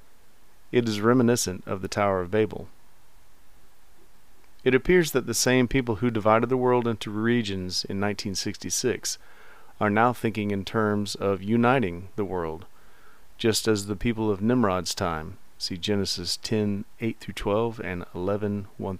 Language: English